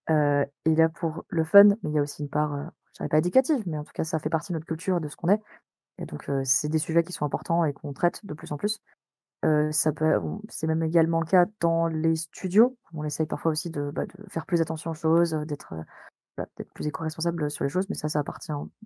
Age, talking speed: 20-39, 265 wpm